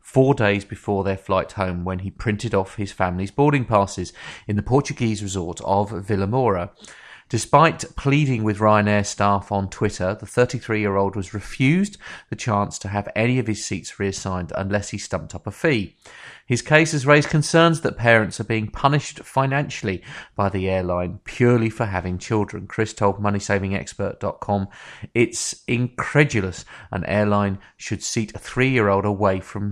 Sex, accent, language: male, British, English